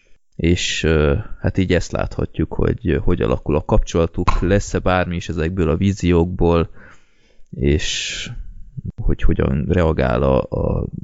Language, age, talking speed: Hungarian, 20-39, 120 wpm